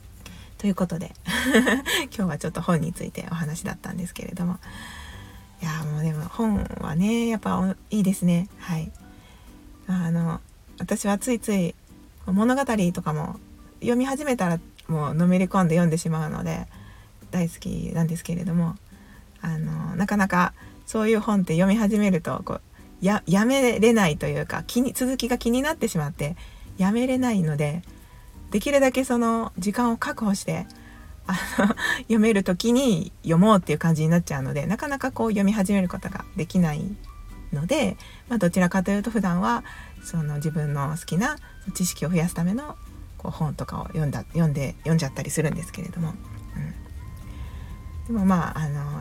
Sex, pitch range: female, 160-210 Hz